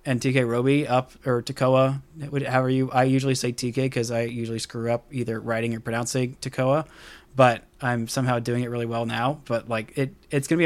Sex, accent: male, American